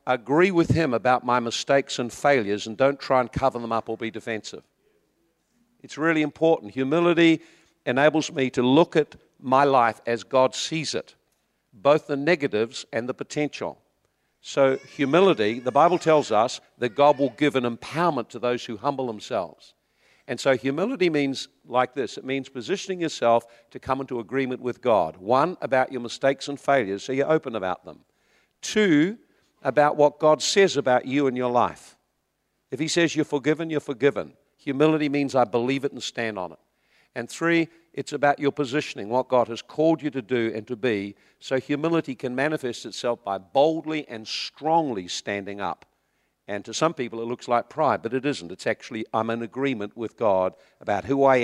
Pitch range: 120-150 Hz